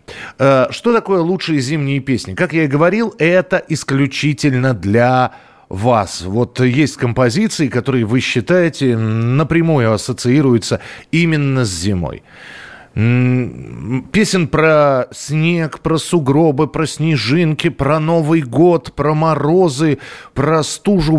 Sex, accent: male, native